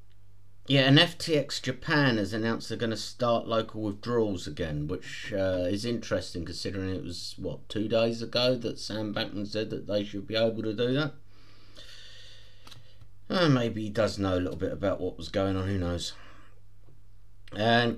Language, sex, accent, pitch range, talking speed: English, male, British, 95-115 Hz, 170 wpm